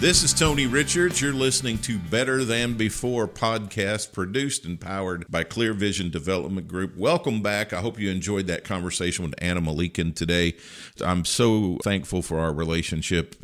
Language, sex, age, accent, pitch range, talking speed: English, male, 50-69, American, 80-105 Hz, 165 wpm